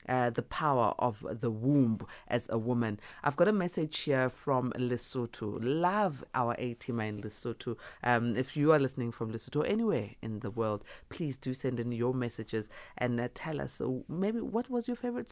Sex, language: female, English